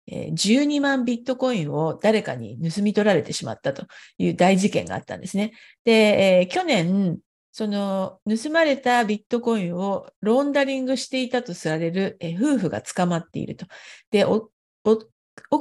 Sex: female